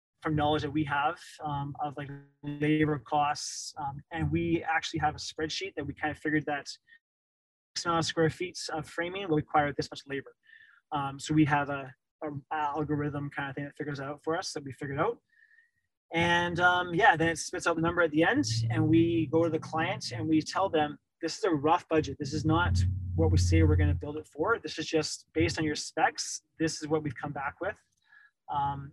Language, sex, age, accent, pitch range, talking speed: English, male, 20-39, American, 145-165 Hz, 220 wpm